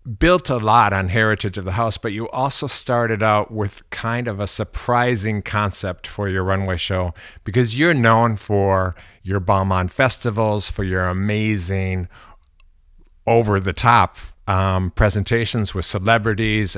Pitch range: 95-115 Hz